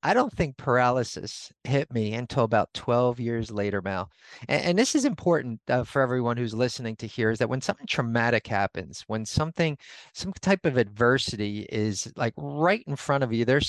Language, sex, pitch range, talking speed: English, male, 120-160 Hz, 195 wpm